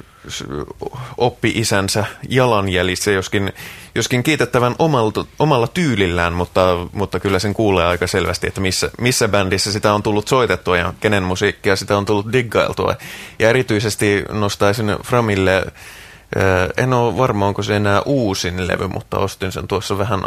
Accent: native